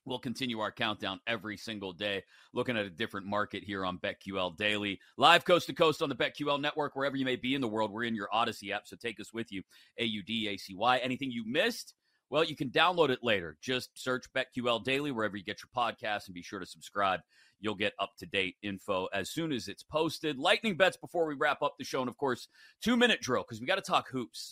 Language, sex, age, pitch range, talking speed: English, male, 30-49, 105-155 Hz, 235 wpm